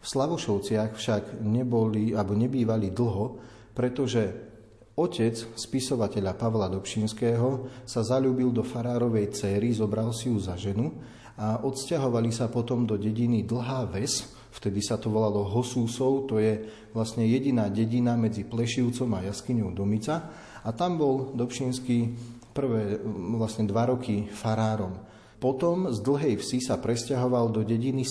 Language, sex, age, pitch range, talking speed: Slovak, male, 40-59, 110-130 Hz, 130 wpm